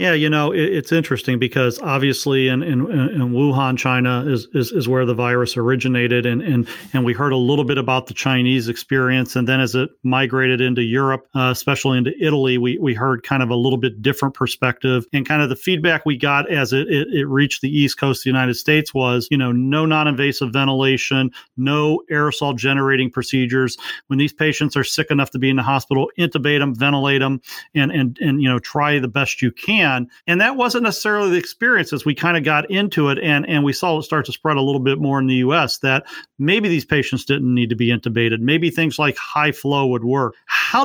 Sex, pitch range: male, 130-155 Hz